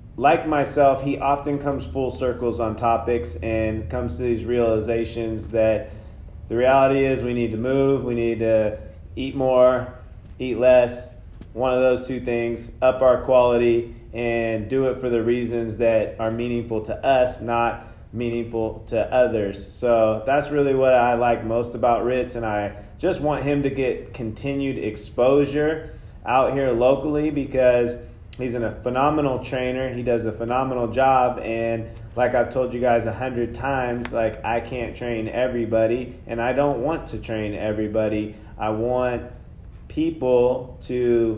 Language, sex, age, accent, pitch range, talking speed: English, male, 30-49, American, 110-130 Hz, 160 wpm